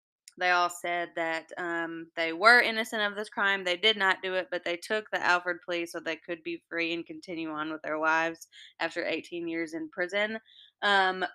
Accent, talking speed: American, 205 wpm